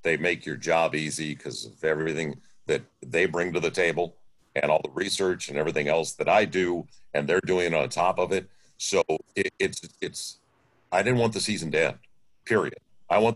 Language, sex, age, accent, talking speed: English, male, 50-69, American, 205 wpm